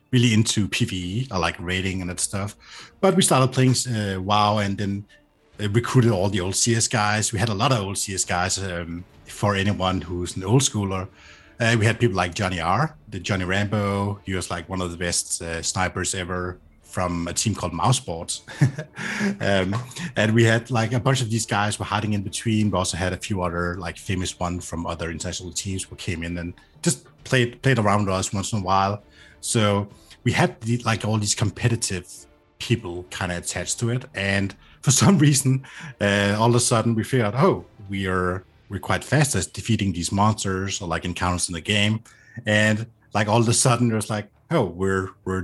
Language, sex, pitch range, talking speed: English, male, 95-120 Hz, 210 wpm